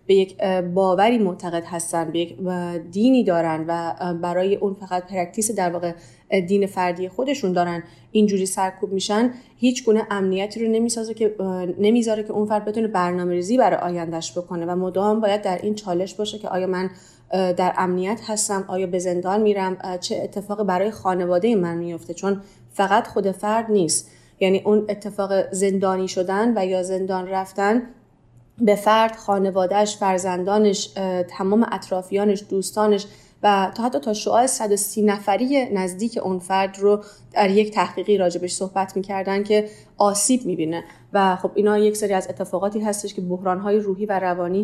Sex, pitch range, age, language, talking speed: female, 185-210 Hz, 30-49, Persian, 155 wpm